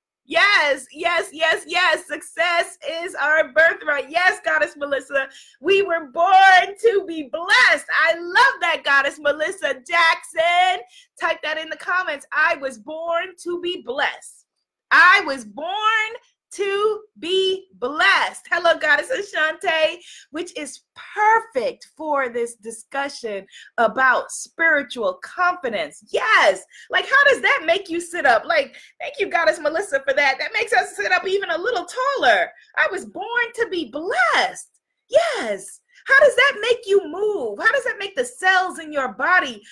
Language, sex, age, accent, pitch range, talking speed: English, female, 30-49, American, 275-365 Hz, 150 wpm